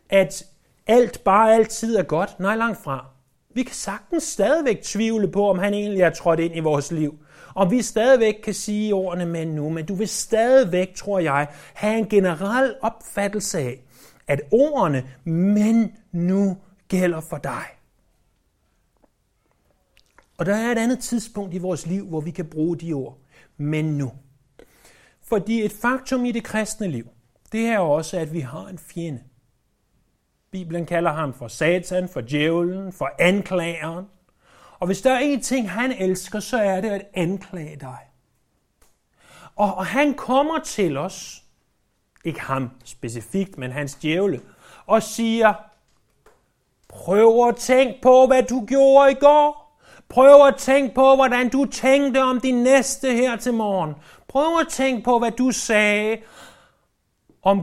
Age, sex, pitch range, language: 30-49, male, 165-230 Hz, Danish